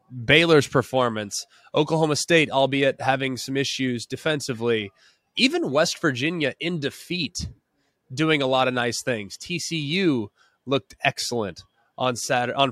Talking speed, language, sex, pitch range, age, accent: 125 wpm, English, male, 125-160 Hz, 20-39, American